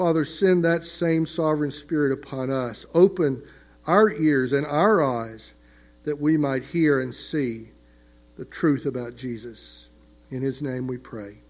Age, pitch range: 50-69, 130-175 Hz